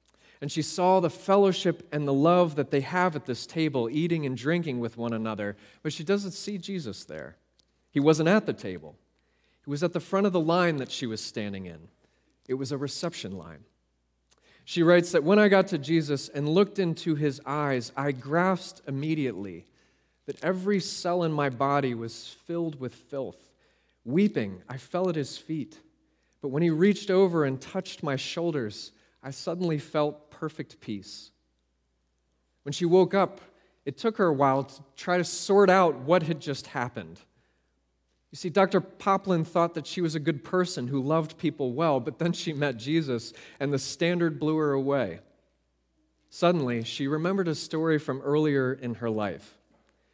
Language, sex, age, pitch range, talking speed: English, male, 30-49, 125-175 Hz, 180 wpm